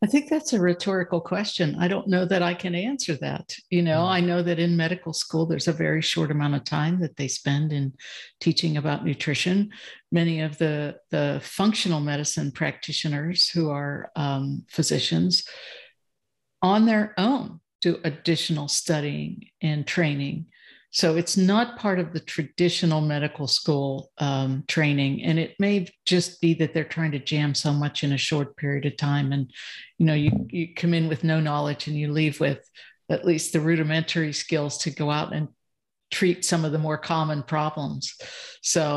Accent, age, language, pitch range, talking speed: American, 60-79, English, 150-175 Hz, 175 wpm